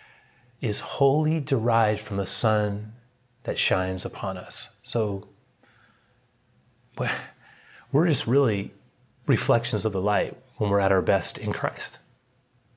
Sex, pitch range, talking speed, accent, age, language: male, 100-125 Hz, 115 wpm, American, 30-49, English